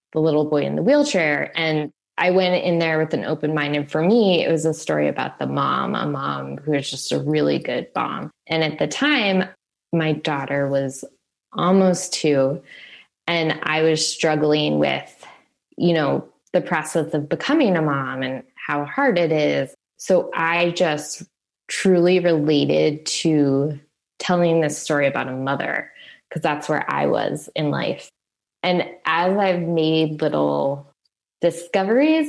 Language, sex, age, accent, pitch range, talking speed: English, female, 20-39, American, 145-180 Hz, 160 wpm